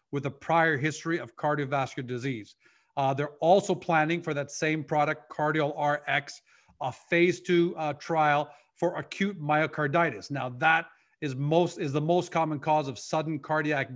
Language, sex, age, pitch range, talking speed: English, male, 40-59, 145-170 Hz, 160 wpm